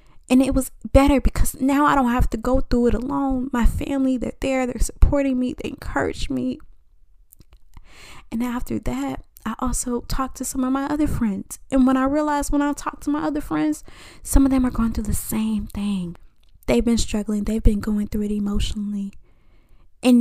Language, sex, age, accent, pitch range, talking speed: English, female, 20-39, American, 205-255 Hz, 195 wpm